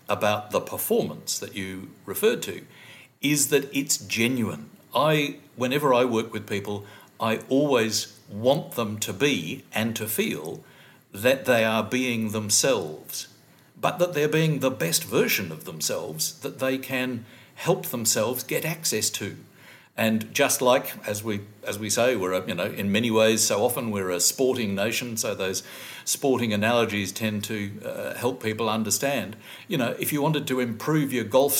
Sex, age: male, 60-79